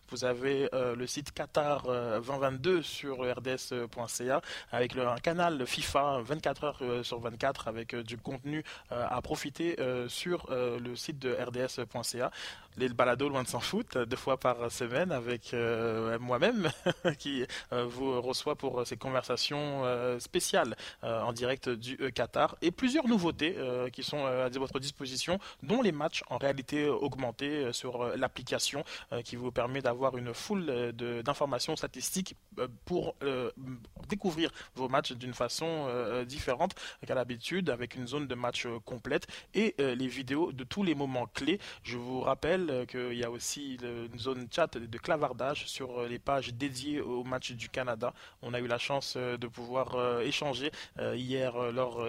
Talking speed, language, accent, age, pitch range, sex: 155 wpm, French, French, 20-39, 120-145 Hz, male